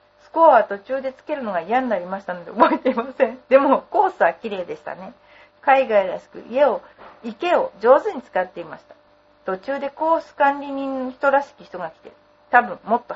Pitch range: 205-290 Hz